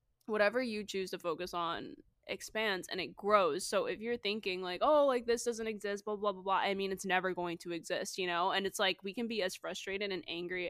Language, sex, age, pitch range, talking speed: English, female, 10-29, 190-230 Hz, 240 wpm